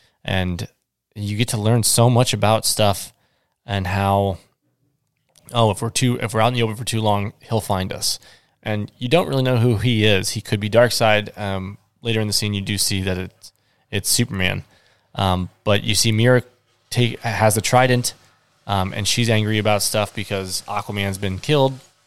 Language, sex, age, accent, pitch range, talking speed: English, male, 20-39, American, 100-120 Hz, 195 wpm